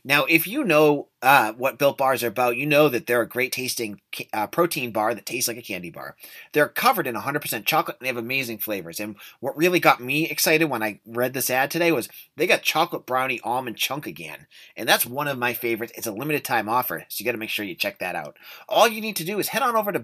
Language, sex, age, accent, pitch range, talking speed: English, male, 30-49, American, 120-180 Hz, 250 wpm